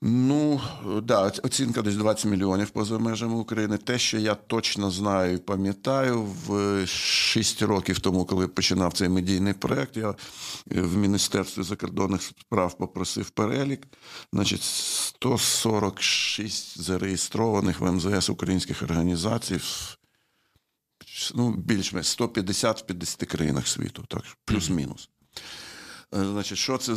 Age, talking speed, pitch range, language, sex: 50-69, 115 wpm, 90-105 Hz, Ukrainian, male